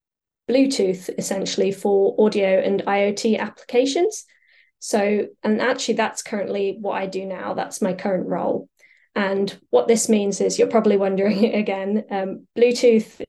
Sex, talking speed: female, 140 wpm